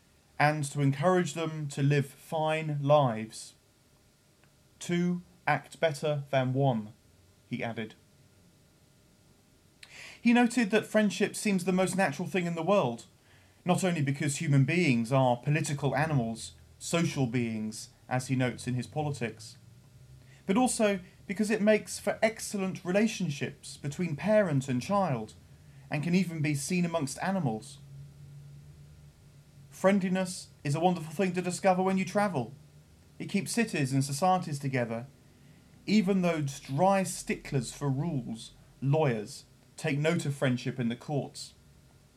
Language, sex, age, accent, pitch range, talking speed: English, male, 30-49, British, 130-180 Hz, 130 wpm